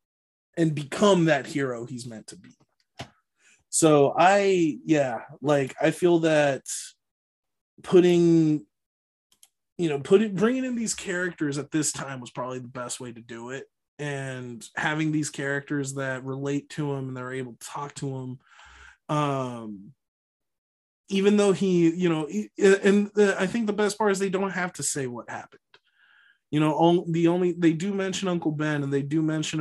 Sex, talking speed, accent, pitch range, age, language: male, 170 wpm, American, 135-170 Hz, 20-39, English